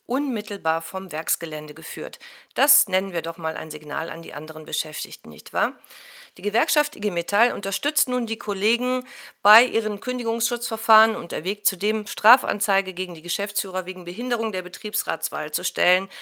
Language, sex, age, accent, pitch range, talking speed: German, female, 50-69, German, 175-230 Hz, 150 wpm